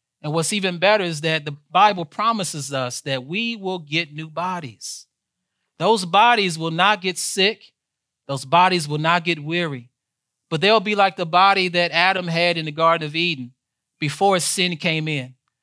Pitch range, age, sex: 130-185 Hz, 30-49, male